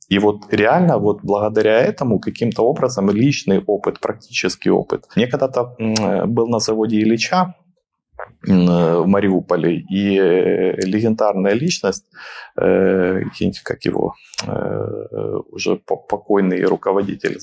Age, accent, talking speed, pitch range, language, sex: 20-39, native, 95 wpm, 100-125 Hz, Ukrainian, male